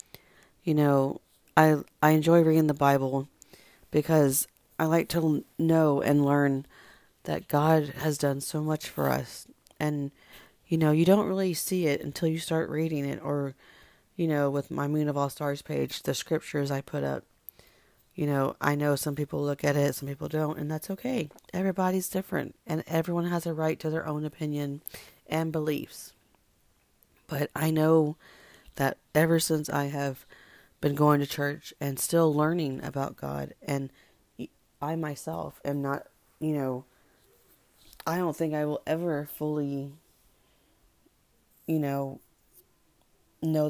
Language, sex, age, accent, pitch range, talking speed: English, female, 40-59, American, 140-160 Hz, 155 wpm